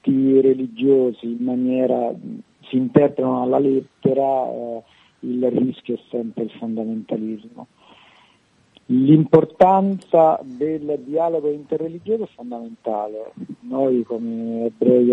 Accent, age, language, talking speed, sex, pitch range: native, 50-69, Italian, 90 wpm, male, 115-140 Hz